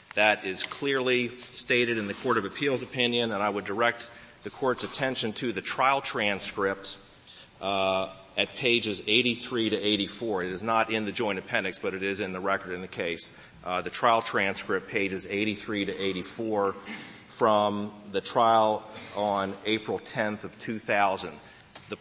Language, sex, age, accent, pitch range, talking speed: English, male, 40-59, American, 95-115 Hz, 165 wpm